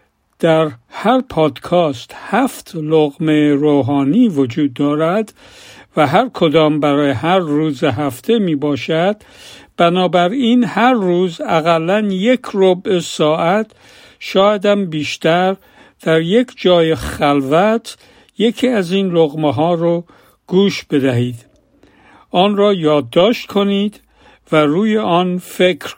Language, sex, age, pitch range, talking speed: Persian, male, 50-69, 155-200 Hz, 105 wpm